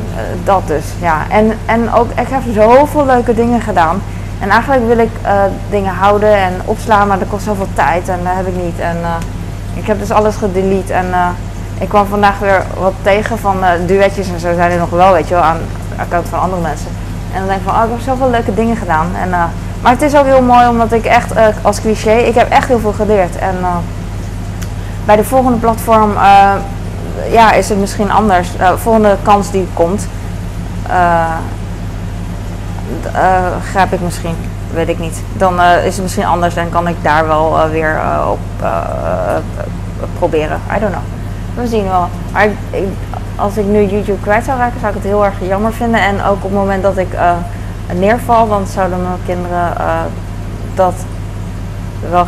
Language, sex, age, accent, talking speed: Dutch, female, 20-39, Dutch, 200 wpm